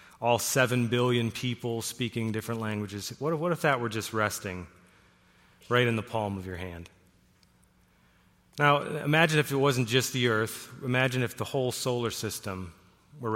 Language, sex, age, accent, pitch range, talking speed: English, male, 30-49, American, 100-120 Hz, 160 wpm